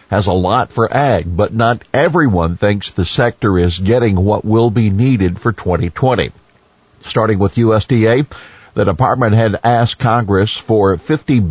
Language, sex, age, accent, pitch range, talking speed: English, male, 50-69, American, 90-115 Hz, 150 wpm